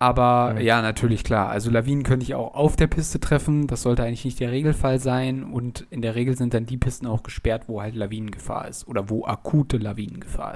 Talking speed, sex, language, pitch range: 215 wpm, male, German, 110-130 Hz